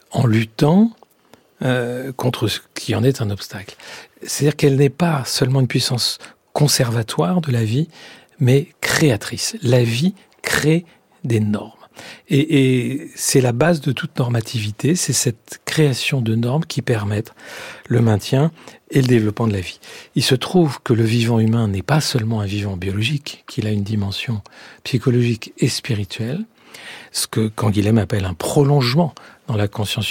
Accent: French